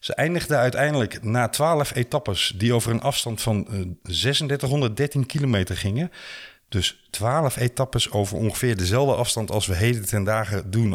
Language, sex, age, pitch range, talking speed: Dutch, male, 50-69, 100-130 Hz, 150 wpm